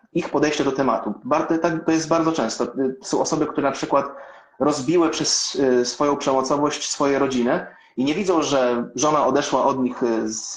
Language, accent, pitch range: Polish, native, 130-170 Hz